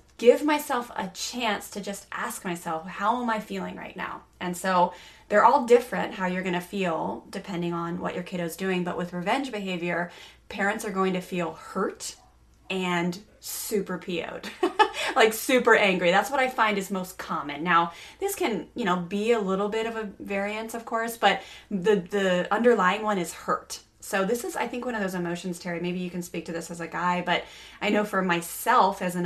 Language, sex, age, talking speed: English, female, 20-39, 205 wpm